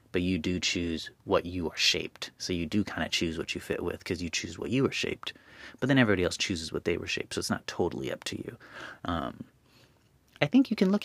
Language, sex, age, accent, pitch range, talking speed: English, male, 30-49, American, 90-110 Hz, 255 wpm